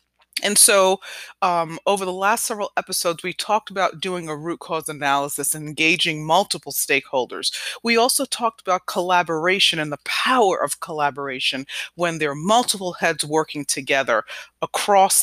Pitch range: 150-195 Hz